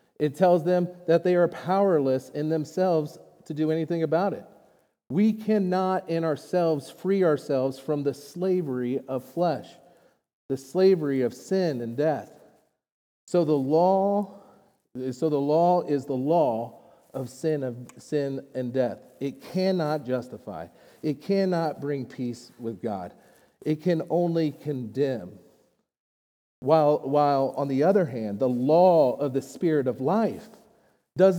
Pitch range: 135-180 Hz